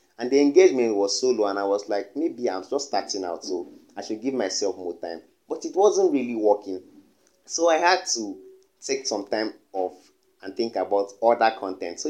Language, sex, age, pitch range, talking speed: English, male, 30-49, 95-155 Hz, 205 wpm